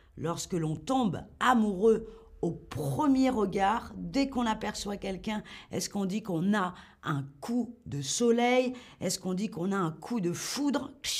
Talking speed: 155 wpm